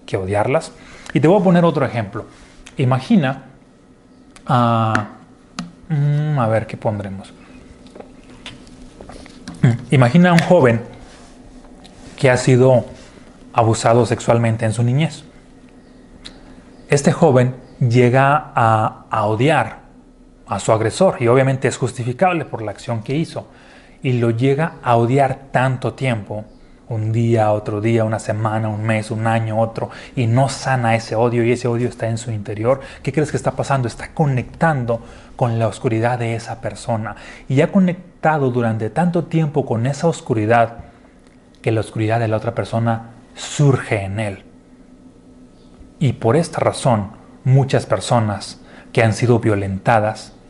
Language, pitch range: Spanish, 110-135 Hz